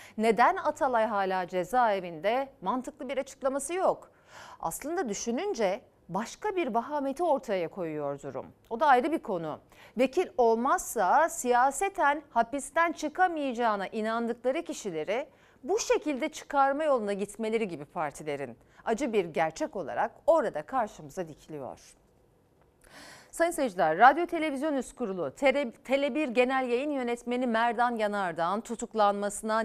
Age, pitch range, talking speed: 40-59, 200-280 Hz, 110 wpm